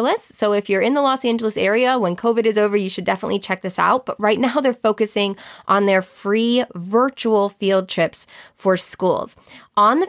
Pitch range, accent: 185-235 Hz, American